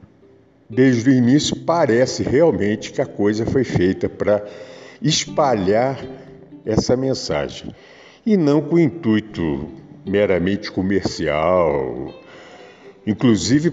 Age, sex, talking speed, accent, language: 50-69, male, 90 wpm, Brazilian, Portuguese